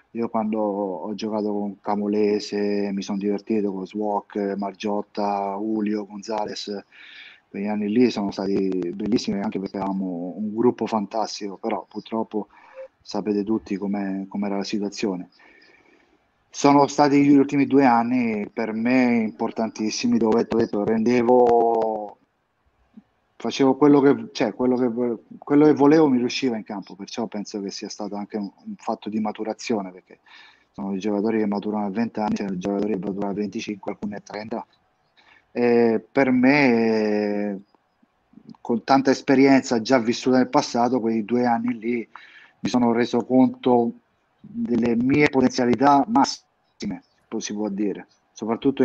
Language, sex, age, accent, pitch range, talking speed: Italian, male, 30-49, native, 105-125 Hz, 145 wpm